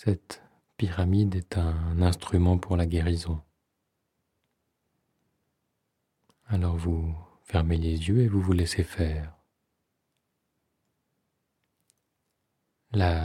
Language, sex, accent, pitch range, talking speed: French, male, French, 85-100 Hz, 85 wpm